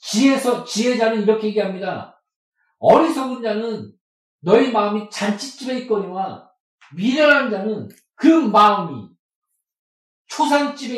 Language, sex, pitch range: Korean, male, 165-250 Hz